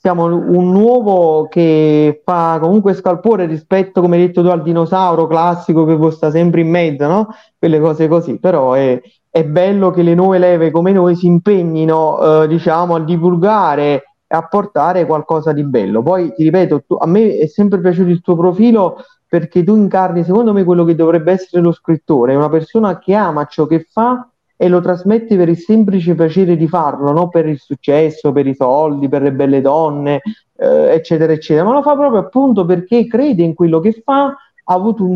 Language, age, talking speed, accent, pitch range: Italian, 30-49, 190 wpm, native, 160-200 Hz